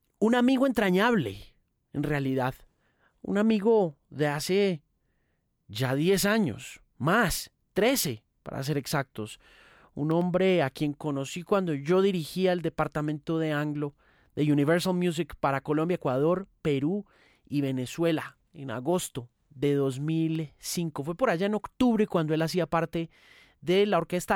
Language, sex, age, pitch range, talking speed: Spanish, male, 30-49, 135-180 Hz, 135 wpm